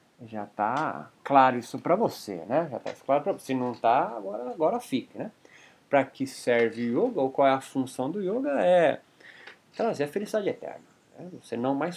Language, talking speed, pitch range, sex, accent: Portuguese, 200 wpm, 120-180 Hz, male, Brazilian